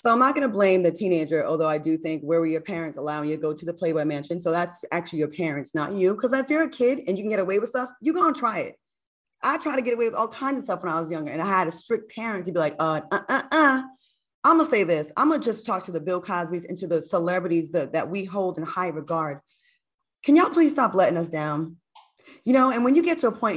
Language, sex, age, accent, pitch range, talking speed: English, female, 20-39, American, 170-240 Hz, 285 wpm